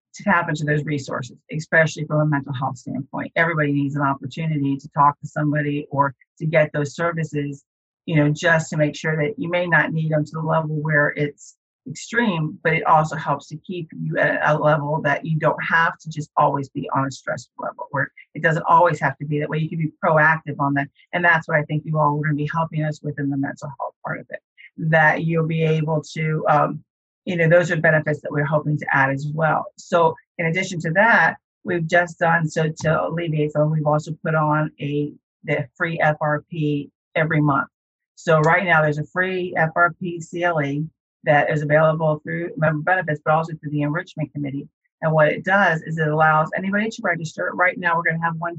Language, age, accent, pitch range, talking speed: English, 40-59, American, 150-165 Hz, 215 wpm